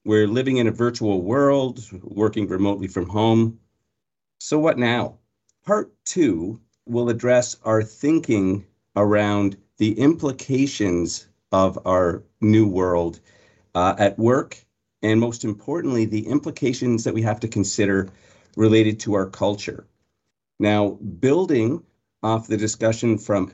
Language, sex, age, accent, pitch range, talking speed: English, male, 50-69, American, 100-120 Hz, 125 wpm